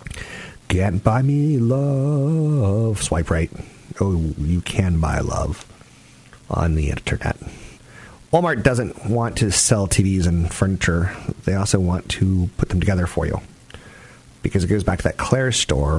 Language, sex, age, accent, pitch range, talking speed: English, male, 40-59, American, 90-110 Hz, 145 wpm